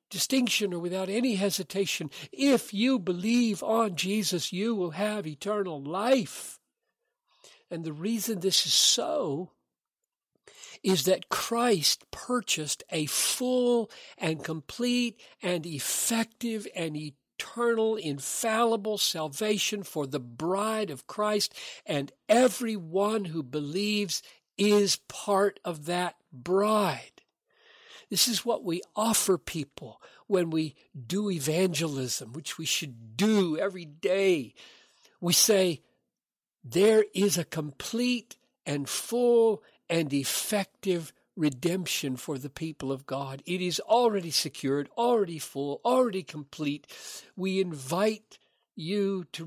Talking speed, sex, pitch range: 115 wpm, male, 155-220 Hz